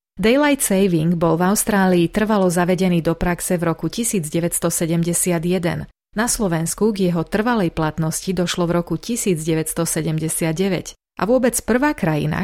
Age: 30-49